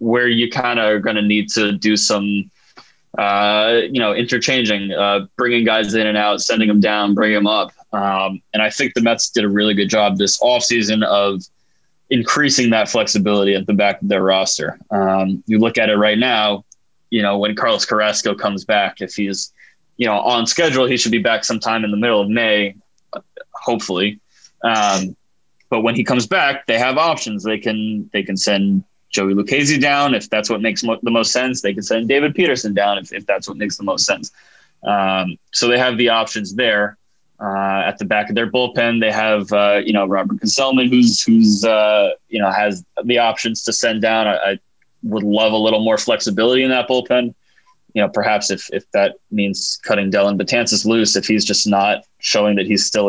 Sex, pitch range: male, 100-115 Hz